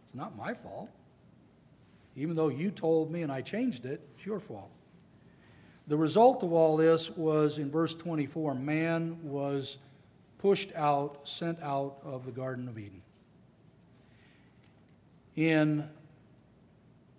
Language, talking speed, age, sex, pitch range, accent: English, 125 wpm, 60-79, male, 140-170 Hz, American